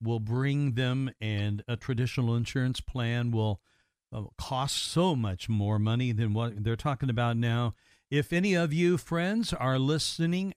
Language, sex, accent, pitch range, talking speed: English, male, American, 120-150 Hz, 165 wpm